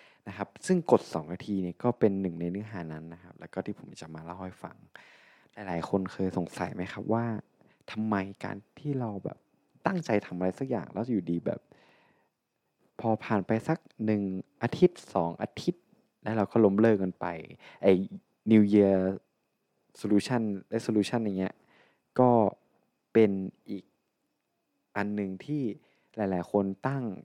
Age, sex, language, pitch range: 20-39, male, Thai, 95-120 Hz